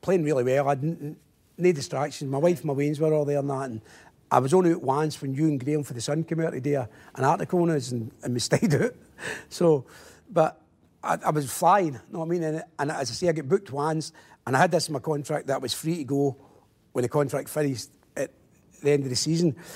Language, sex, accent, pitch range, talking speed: English, male, British, 135-165 Hz, 260 wpm